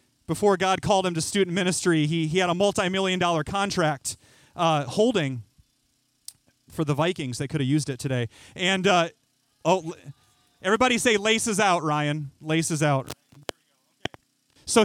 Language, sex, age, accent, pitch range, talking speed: English, male, 30-49, American, 145-230 Hz, 150 wpm